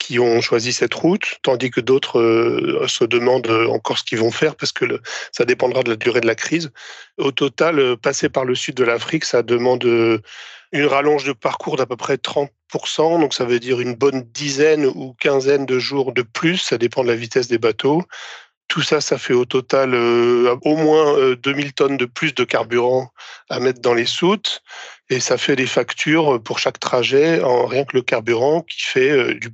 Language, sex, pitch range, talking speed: French, male, 120-155 Hz, 210 wpm